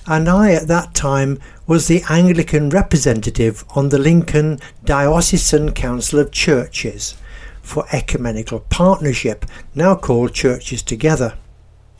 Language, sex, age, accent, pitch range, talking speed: English, male, 60-79, British, 115-175 Hz, 115 wpm